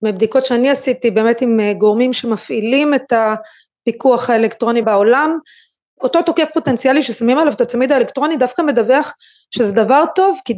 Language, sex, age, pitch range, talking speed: Hebrew, female, 30-49, 230-295 Hz, 140 wpm